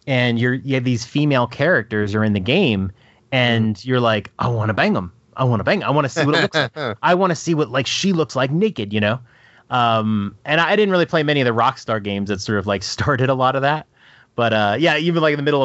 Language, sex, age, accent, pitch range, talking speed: English, male, 30-49, American, 110-140 Hz, 275 wpm